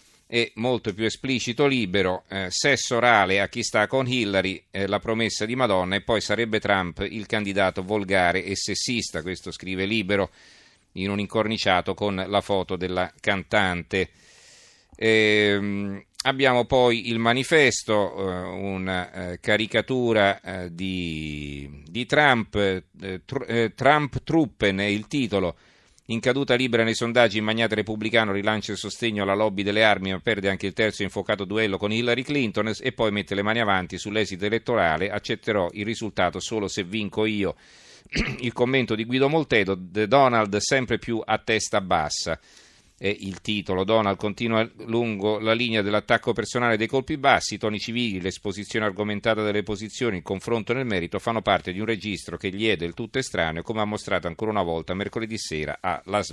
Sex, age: male, 40-59